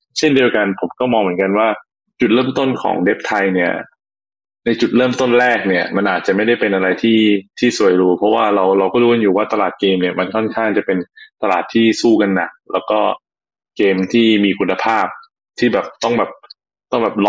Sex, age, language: male, 20-39, Thai